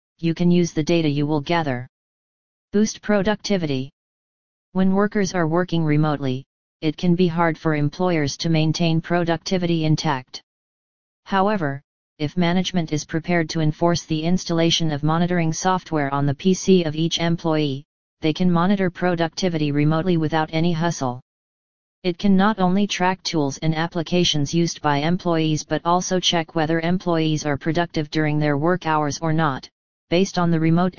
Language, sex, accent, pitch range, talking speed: English, female, American, 155-175 Hz, 155 wpm